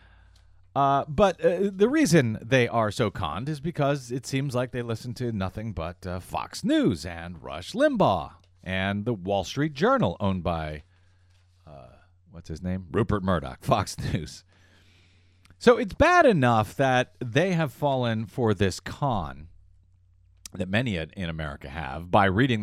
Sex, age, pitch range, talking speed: male, 40-59, 90-135 Hz, 155 wpm